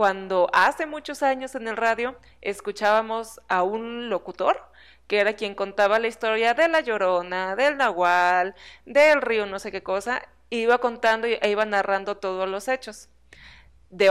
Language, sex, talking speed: Spanish, female, 155 wpm